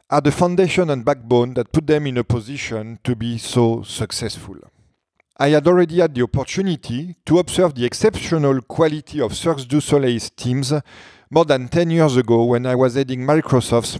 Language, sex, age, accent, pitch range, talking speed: French, male, 40-59, French, 120-165 Hz, 175 wpm